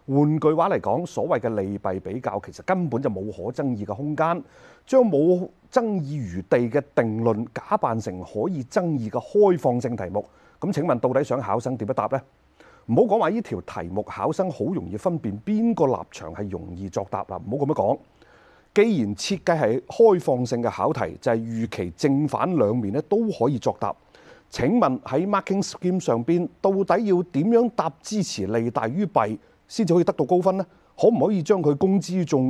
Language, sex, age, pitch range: Chinese, male, 30-49, 115-190 Hz